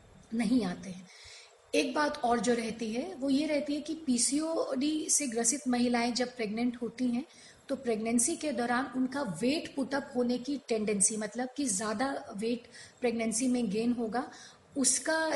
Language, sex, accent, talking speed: Hindi, female, native, 160 wpm